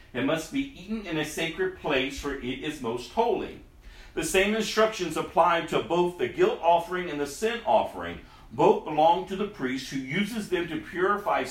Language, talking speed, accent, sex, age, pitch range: English, 190 wpm, American, male, 50-69, 145-195 Hz